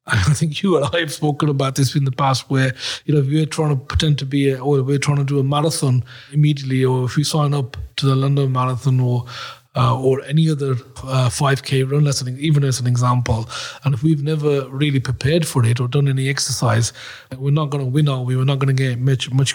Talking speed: 235 wpm